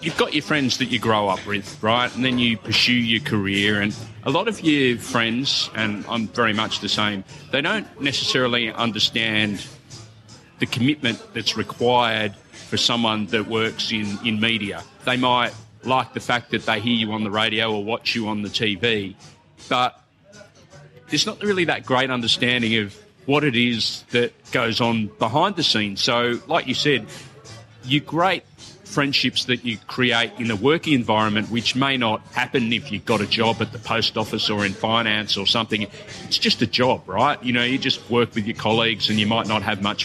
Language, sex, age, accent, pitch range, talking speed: English, male, 30-49, Australian, 110-130 Hz, 195 wpm